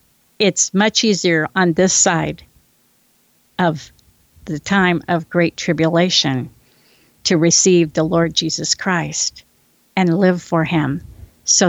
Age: 50-69